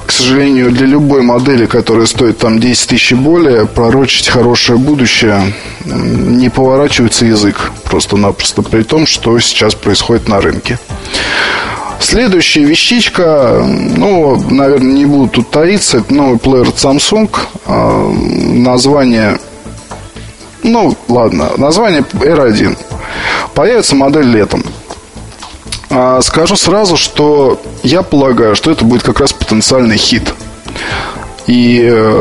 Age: 20-39